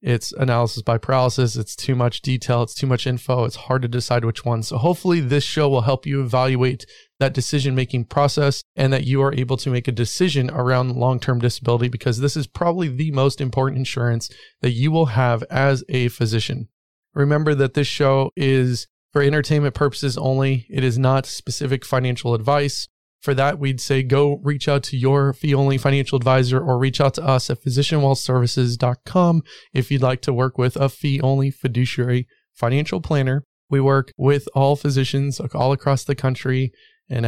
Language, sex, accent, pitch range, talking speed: English, male, American, 125-140 Hz, 180 wpm